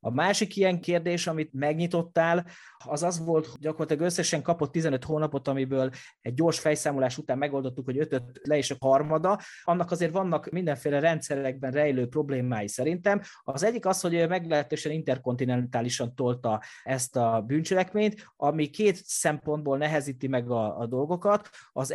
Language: Hungarian